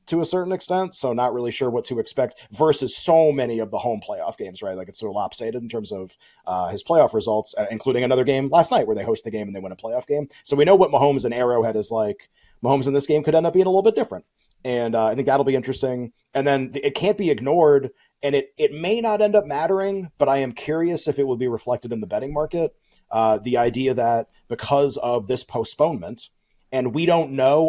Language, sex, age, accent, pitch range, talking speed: English, male, 30-49, American, 125-160 Hz, 250 wpm